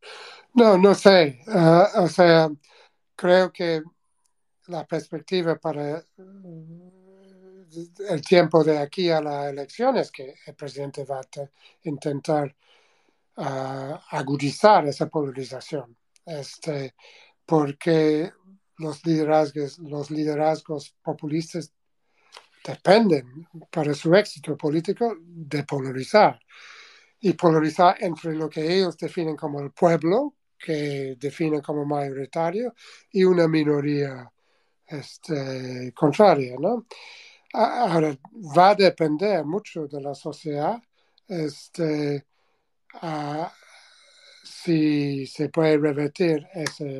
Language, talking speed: Spanish, 95 wpm